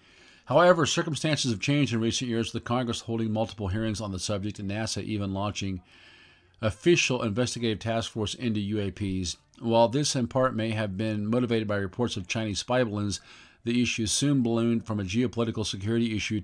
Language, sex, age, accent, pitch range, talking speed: English, male, 50-69, American, 95-115 Hz, 180 wpm